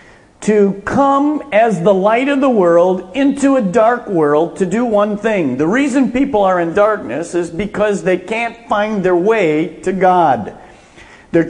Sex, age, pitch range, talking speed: male, 50-69, 170-230 Hz, 165 wpm